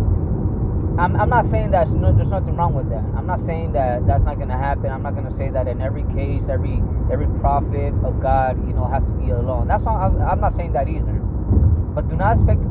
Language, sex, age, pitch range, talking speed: English, male, 20-39, 80-100 Hz, 240 wpm